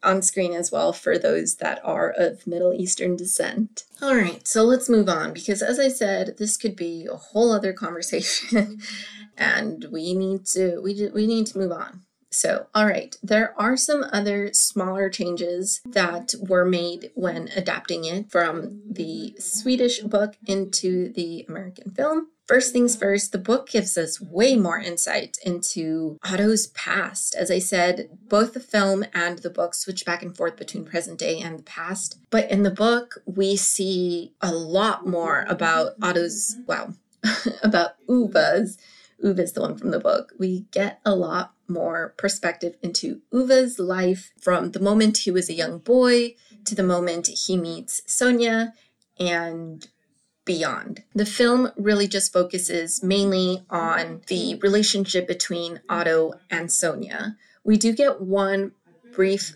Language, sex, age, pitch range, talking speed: English, female, 30-49, 175-215 Hz, 160 wpm